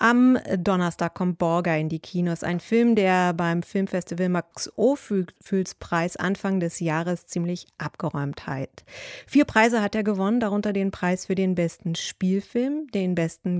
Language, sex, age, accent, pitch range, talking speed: English, female, 30-49, German, 170-210 Hz, 155 wpm